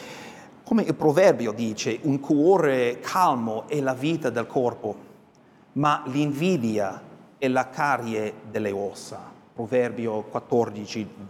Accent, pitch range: native, 155-205 Hz